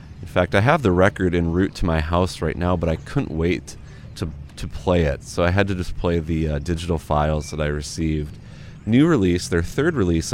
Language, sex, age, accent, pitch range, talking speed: English, male, 30-49, American, 85-110 Hz, 225 wpm